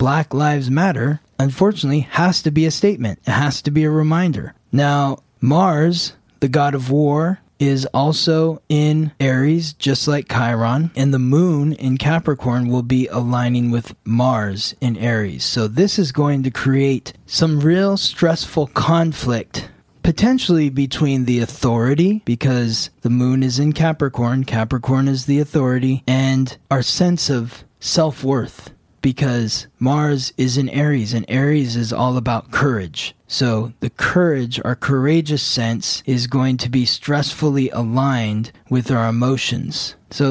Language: English